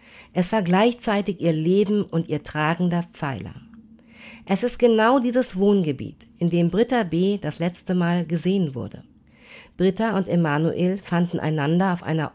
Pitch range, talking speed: 160-205 Hz, 145 wpm